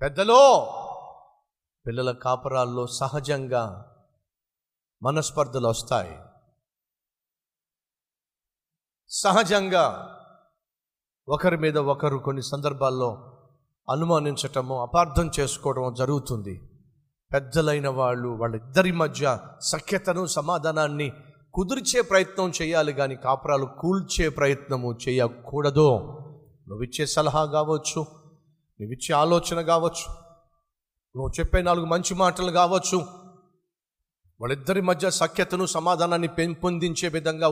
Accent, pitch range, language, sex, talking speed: native, 135-180 Hz, Telugu, male, 75 wpm